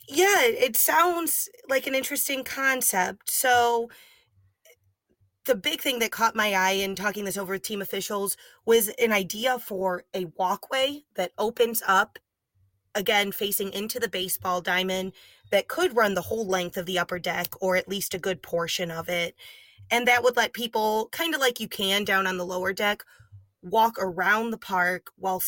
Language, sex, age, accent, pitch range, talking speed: English, female, 20-39, American, 180-225 Hz, 175 wpm